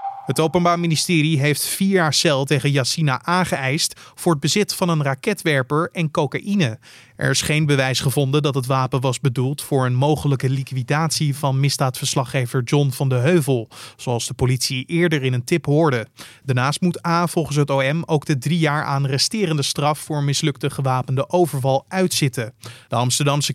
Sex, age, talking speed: male, 20-39, 170 wpm